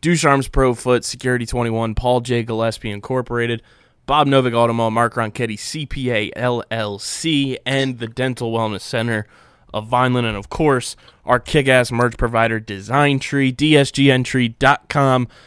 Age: 20-39